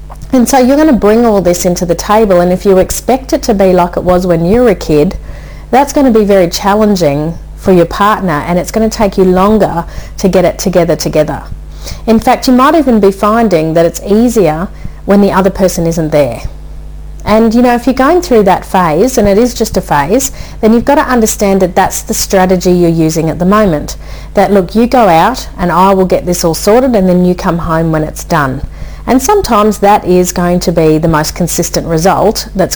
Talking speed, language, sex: 225 wpm, English, female